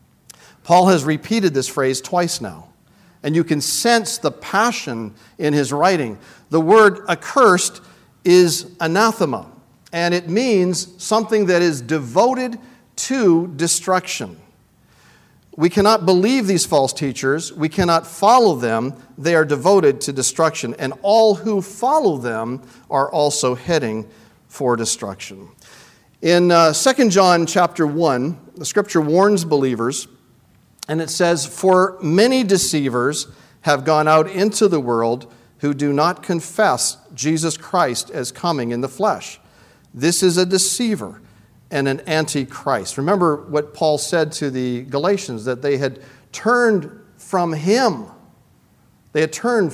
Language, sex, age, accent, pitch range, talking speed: English, male, 50-69, American, 135-185 Hz, 135 wpm